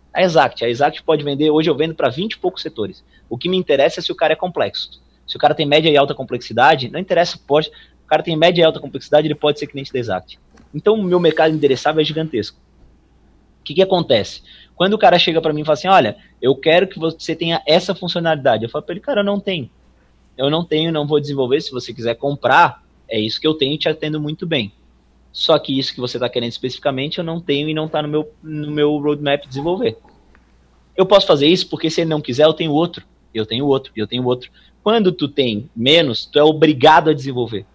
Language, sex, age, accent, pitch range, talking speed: Portuguese, male, 20-39, Brazilian, 135-175 Hz, 240 wpm